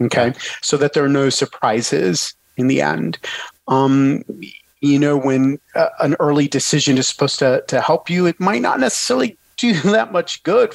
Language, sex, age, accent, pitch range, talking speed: English, male, 40-59, American, 130-170 Hz, 180 wpm